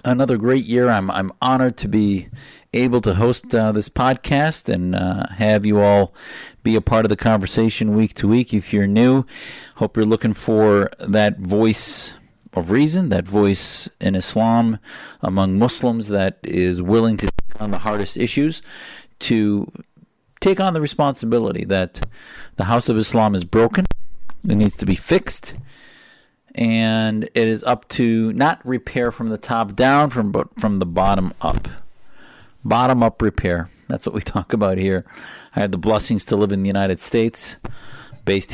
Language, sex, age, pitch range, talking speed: English, male, 40-59, 100-120 Hz, 170 wpm